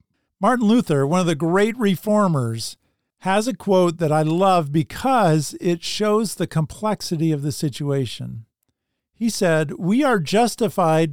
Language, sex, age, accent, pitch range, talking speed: English, male, 50-69, American, 135-195 Hz, 140 wpm